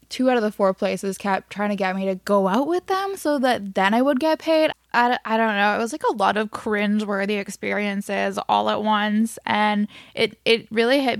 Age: 10-29